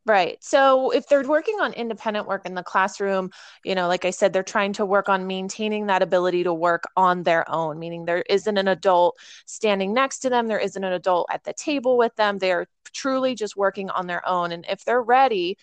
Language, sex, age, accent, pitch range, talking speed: English, female, 20-39, American, 180-215 Hz, 225 wpm